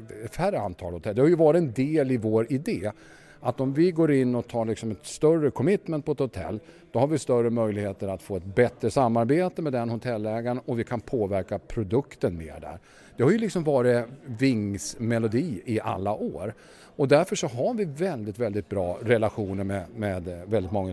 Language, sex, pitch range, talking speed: English, male, 105-140 Hz, 190 wpm